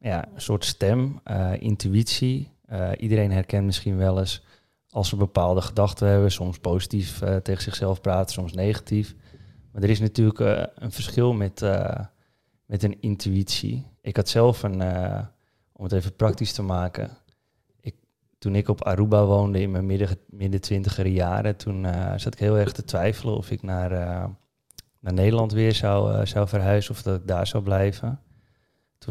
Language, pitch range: Dutch, 90-105 Hz